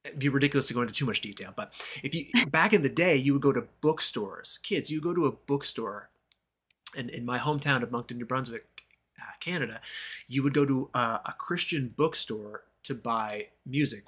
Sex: male